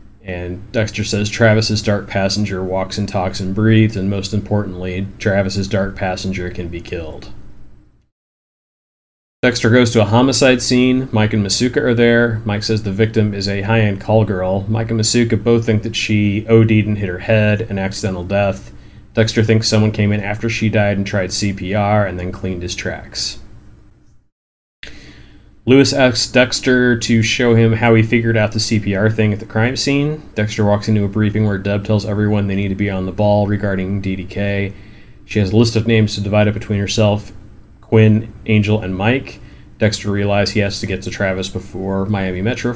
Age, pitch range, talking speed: 30-49, 100-110 Hz, 185 wpm